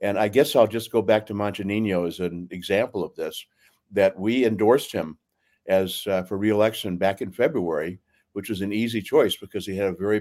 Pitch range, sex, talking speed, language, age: 95-115 Hz, male, 205 wpm, English, 60-79